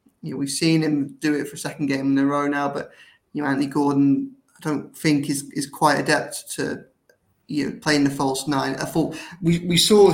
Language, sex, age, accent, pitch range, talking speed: English, male, 20-39, British, 140-155 Hz, 230 wpm